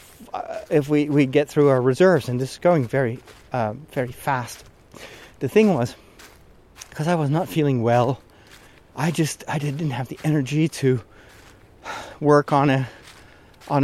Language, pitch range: English, 120-155 Hz